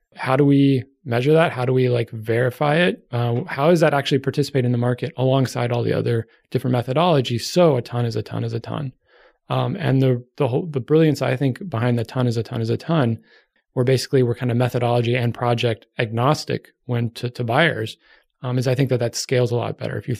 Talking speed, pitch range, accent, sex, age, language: 230 wpm, 120-140 Hz, American, male, 20-39, English